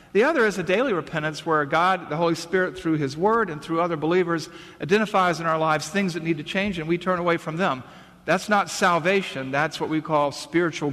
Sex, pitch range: male, 140-180 Hz